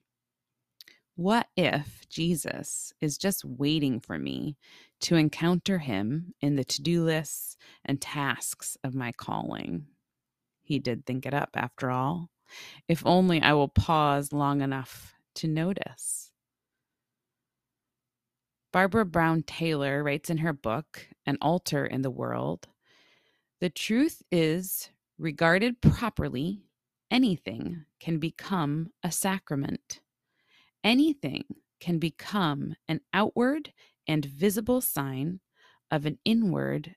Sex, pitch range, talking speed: female, 140-180 Hz, 110 wpm